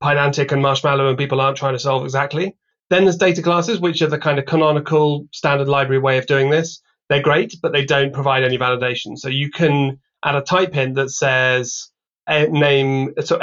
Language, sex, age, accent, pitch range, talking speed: English, male, 30-49, British, 130-150 Hz, 205 wpm